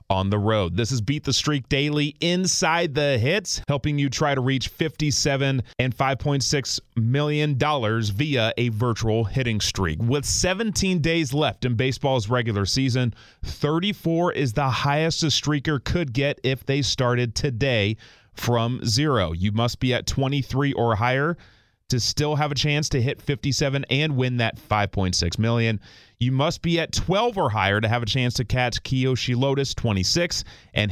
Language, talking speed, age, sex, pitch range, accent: English, 165 wpm, 30-49, male, 110-145 Hz, American